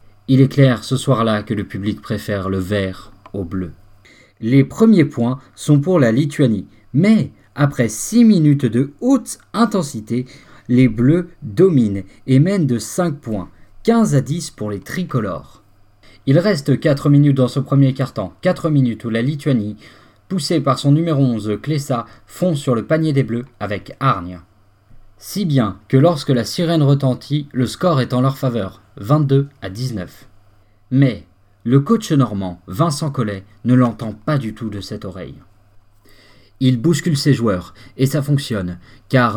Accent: French